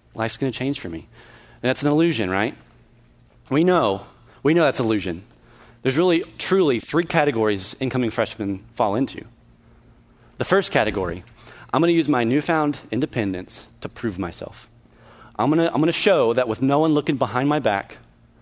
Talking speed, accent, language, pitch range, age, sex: 175 wpm, American, English, 115-165 Hz, 30-49, male